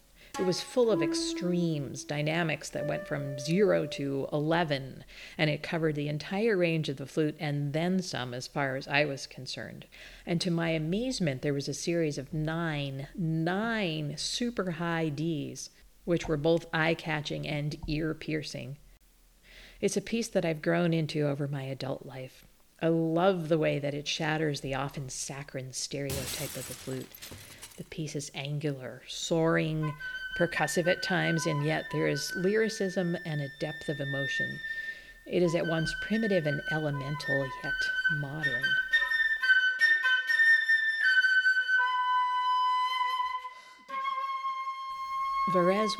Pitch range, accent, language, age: 145-195 Hz, American, English, 50-69